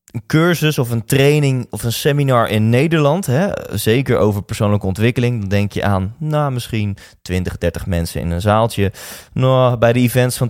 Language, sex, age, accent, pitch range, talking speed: Dutch, male, 20-39, Dutch, 105-140 Hz, 160 wpm